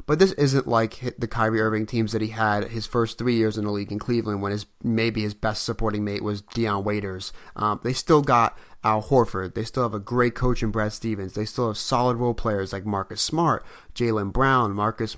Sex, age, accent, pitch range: male, 30-49, American, 105-130 Hz